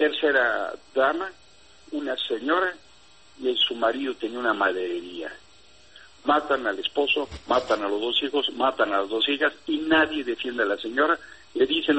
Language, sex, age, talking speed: Spanish, male, 60-79, 155 wpm